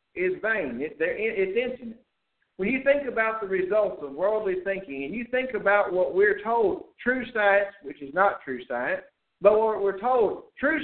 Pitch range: 150-220 Hz